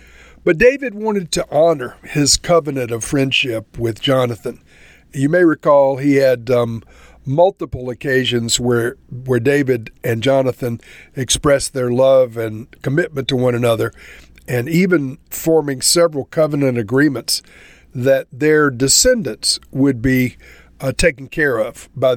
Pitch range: 125-155 Hz